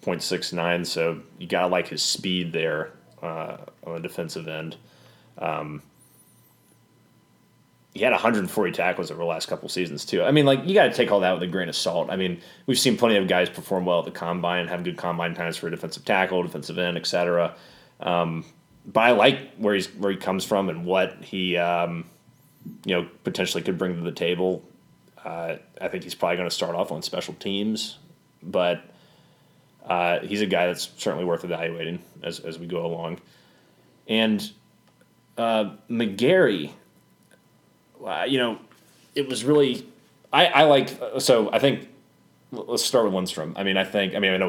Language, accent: English, American